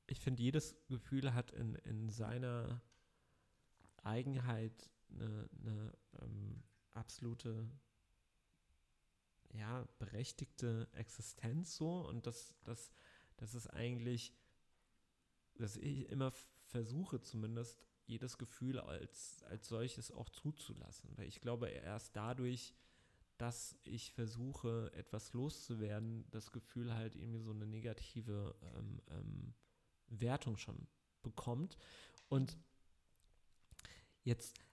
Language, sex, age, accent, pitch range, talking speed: German, male, 30-49, German, 110-130 Hz, 100 wpm